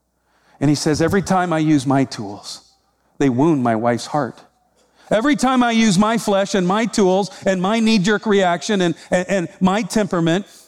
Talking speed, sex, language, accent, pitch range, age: 180 wpm, male, English, American, 150-195 Hz, 50-69